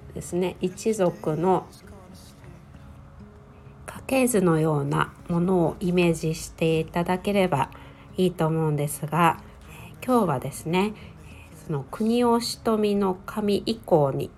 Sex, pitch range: female, 125-195 Hz